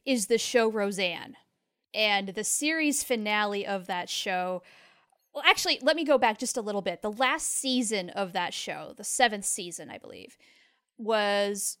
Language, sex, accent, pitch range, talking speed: English, female, American, 195-255 Hz, 170 wpm